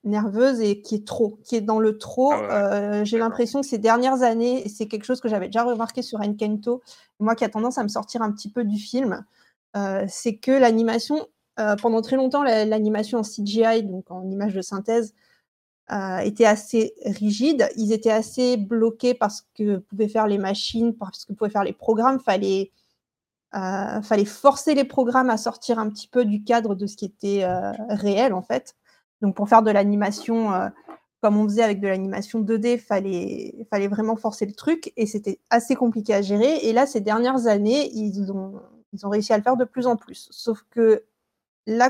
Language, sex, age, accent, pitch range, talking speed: French, female, 30-49, French, 210-240 Hz, 200 wpm